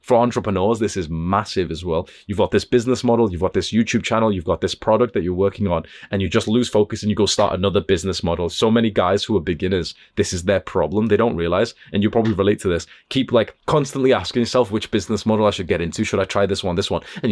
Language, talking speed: English, 265 wpm